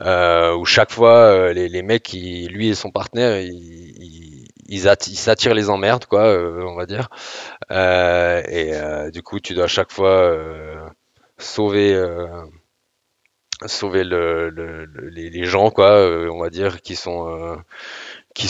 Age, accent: 20-39, French